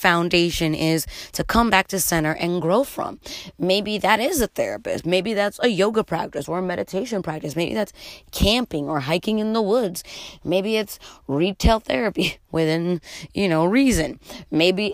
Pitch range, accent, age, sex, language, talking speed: 165-210 Hz, American, 20-39, female, English, 165 wpm